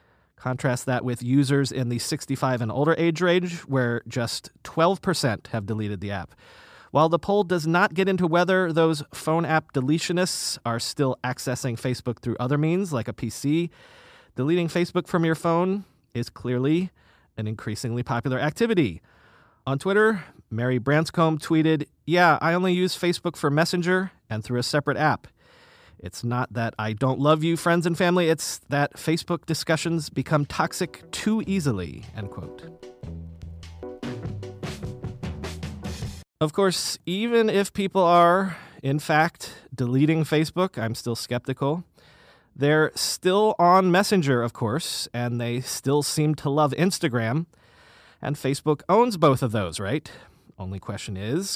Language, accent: English, American